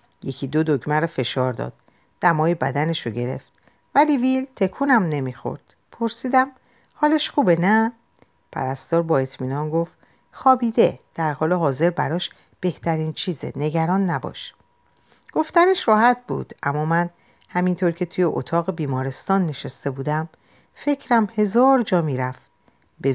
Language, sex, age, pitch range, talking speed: Persian, female, 50-69, 140-195 Hz, 125 wpm